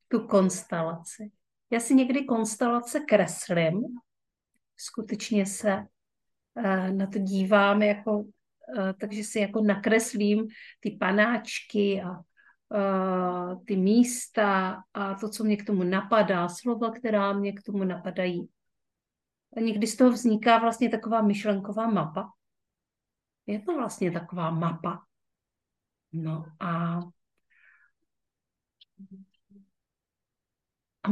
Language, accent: Czech, native